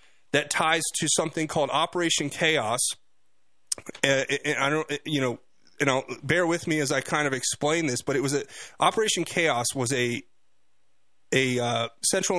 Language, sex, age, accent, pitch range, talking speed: English, male, 30-49, American, 130-155 Hz, 170 wpm